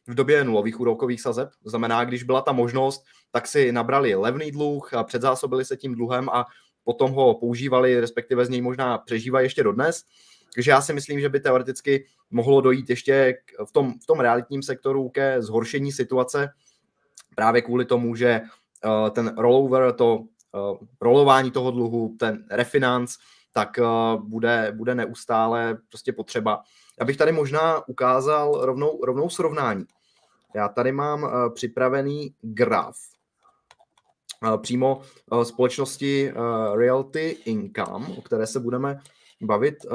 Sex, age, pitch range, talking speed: male, 20-39, 115-140 Hz, 135 wpm